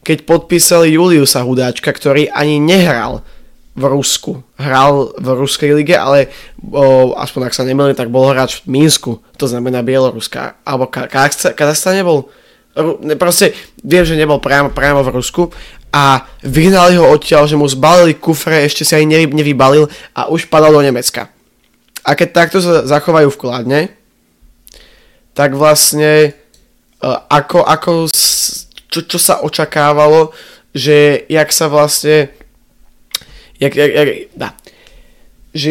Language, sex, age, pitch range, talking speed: Slovak, male, 20-39, 135-160 Hz, 140 wpm